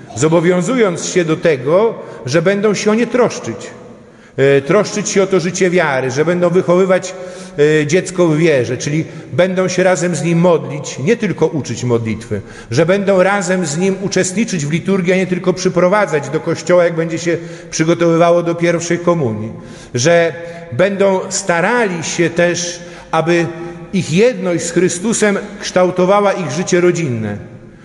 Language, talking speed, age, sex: Polish, 145 wpm, 50-69, male